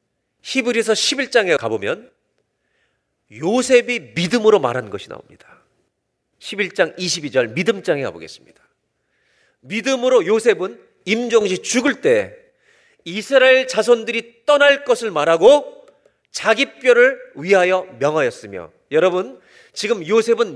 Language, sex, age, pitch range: Korean, male, 40-59, 215-320 Hz